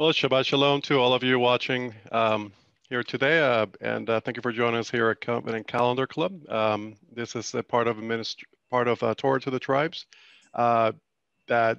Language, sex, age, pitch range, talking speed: English, male, 50-69, 110-130 Hz, 210 wpm